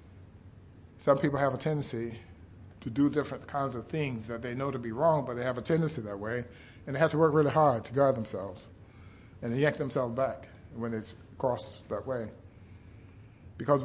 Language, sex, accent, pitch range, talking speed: English, male, American, 100-145 Hz, 190 wpm